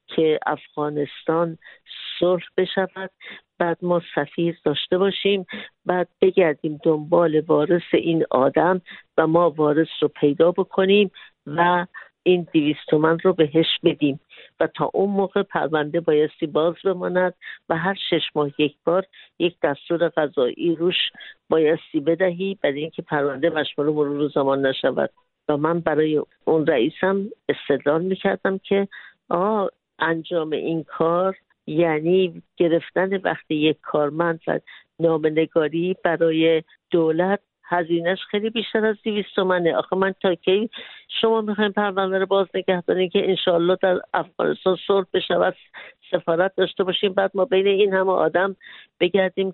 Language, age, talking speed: English, 60-79, 130 wpm